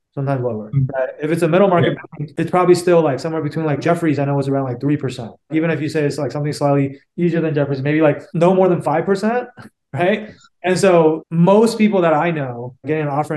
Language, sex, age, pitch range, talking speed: English, male, 20-39, 140-175 Hz, 220 wpm